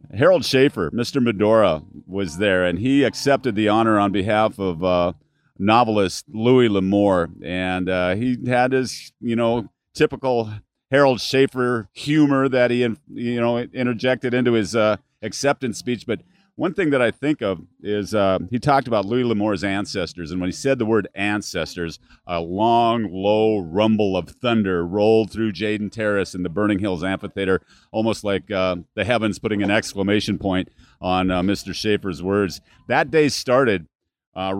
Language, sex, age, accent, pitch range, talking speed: English, male, 40-59, American, 95-125 Hz, 165 wpm